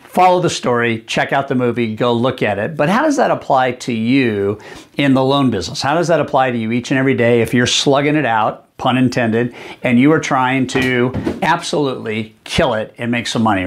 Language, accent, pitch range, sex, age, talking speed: English, American, 120-140 Hz, male, 50-69, 225 wpm